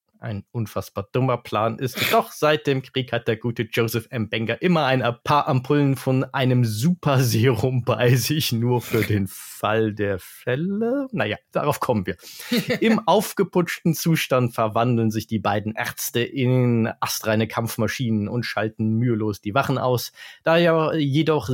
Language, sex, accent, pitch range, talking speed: German, male, German, 110-140 Hz, 150 wpm